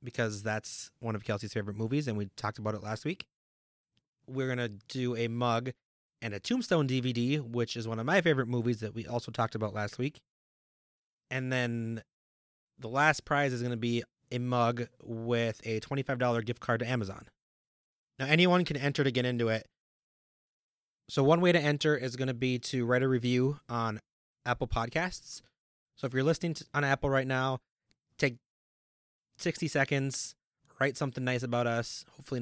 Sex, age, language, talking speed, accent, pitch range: male, 30-49, English, 180 wpm, American, 115-145 Hz